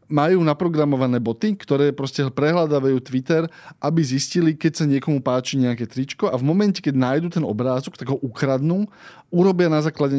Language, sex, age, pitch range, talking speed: Slovak, male, 20-39, 135-170 Hz, 160 wpm